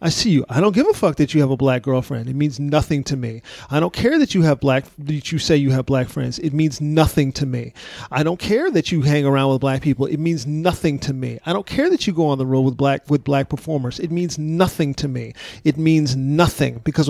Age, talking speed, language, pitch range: 40-59, 265 wpm, English, 140-195 Hz